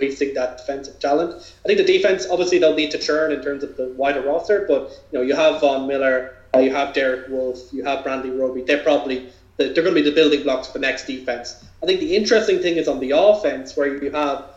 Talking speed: 240 wpm